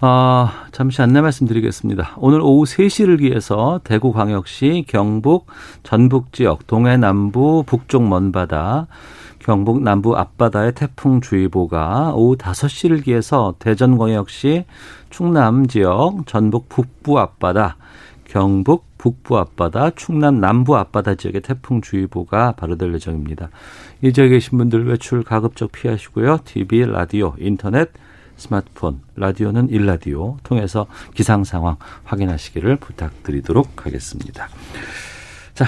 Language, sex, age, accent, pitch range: Korean, male, 50-69, native, 95-130 Hz